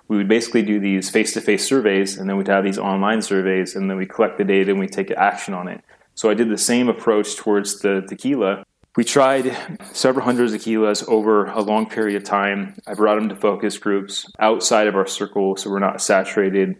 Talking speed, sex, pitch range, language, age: 215 wpm, male, 95-110 Hz, English, 20-39